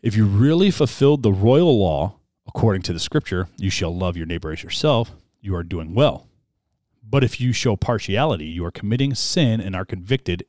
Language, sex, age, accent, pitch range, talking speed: English, male, 40-59, American, 95-135 Hz, 195 wpm